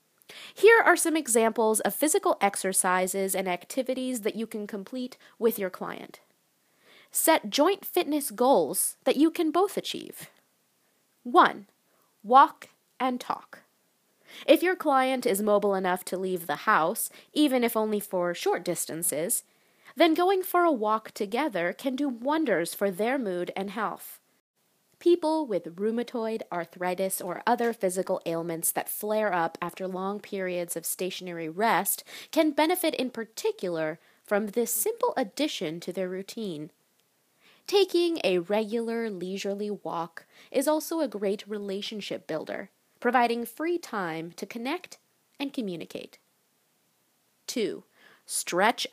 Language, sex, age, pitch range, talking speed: English, female, 20-39, 190-290 Hz, 130 wpm